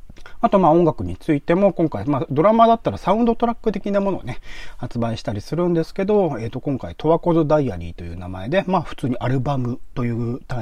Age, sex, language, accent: 40-59, male, Japanese, native